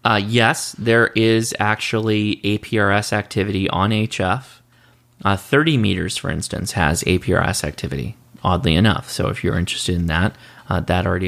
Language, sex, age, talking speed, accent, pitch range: English, male, 30-49, 150 wpm, American, 95-120 Hz